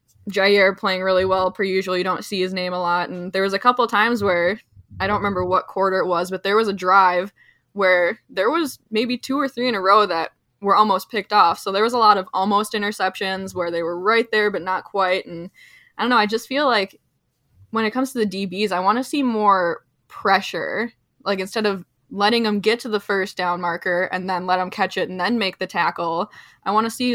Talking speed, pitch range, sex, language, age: 240 wpm, 180-210 Hz, female, English, 10-29